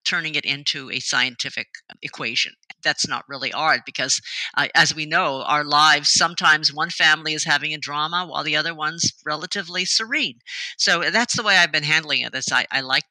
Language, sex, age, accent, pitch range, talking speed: English, female, 50-69, American, 135-195 Hz, 190 wpm